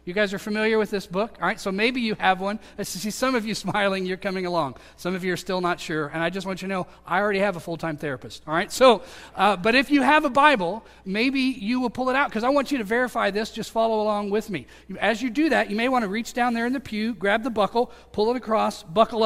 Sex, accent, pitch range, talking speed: male, American, 185-235 Hz, 290 wpm